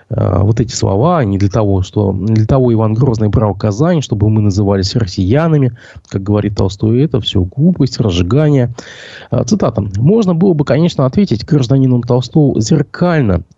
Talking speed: 150 wpm